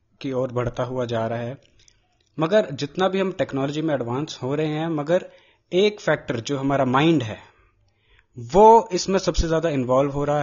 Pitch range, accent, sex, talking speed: 130-175 Hz, native, male, 180 wpm